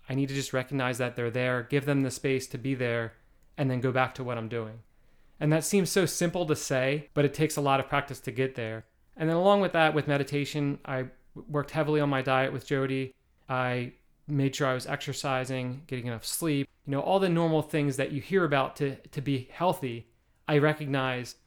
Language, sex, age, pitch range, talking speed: English, male, 30-49, 130-150 Hz, 225 wpm